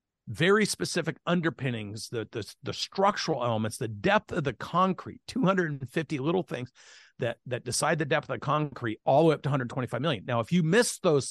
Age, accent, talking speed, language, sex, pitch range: 50-69, American, 190 wpm, English, male, 120-160 Hz